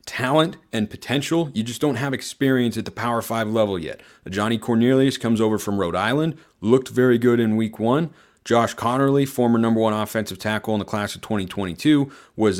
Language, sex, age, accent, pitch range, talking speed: English, male, 30-49, American, 100-130 Hz, 190 wpm